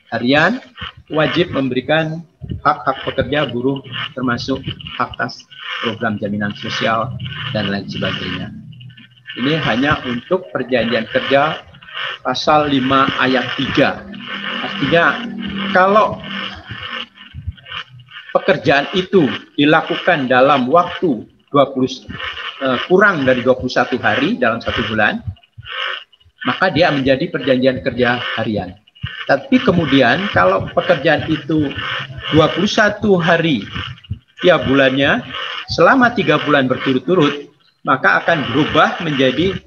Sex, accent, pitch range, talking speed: male, native, 125-155 Hz, 90 wpm